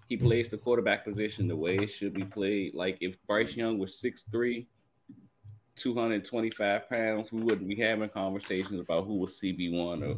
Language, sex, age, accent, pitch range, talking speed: English, male, 30-49, American, 95-115 Hz, 170 wpm